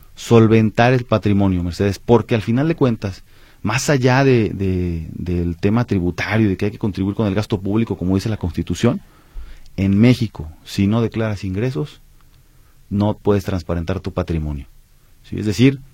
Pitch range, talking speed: 95-120 Hz, 160 wpm